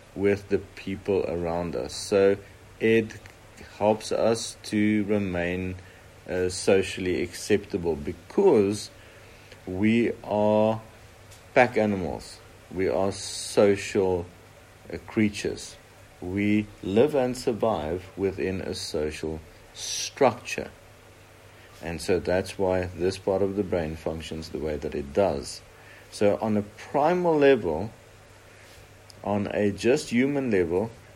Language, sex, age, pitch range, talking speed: English, male, 50-69, 90-110 Hz, 110 wpm